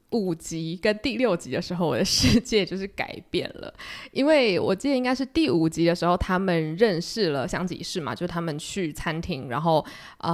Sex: female